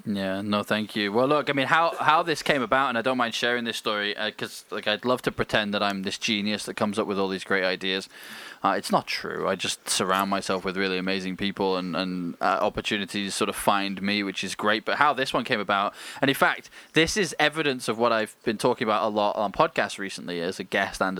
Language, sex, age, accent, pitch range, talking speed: English, male, 20-39, British, 100-120 Hz, 265 wpm